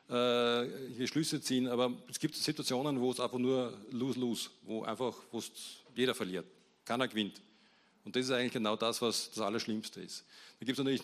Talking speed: 190 wpm